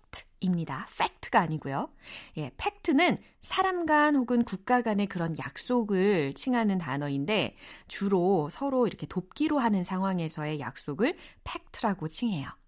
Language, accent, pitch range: Korean, native, 165-250 Hz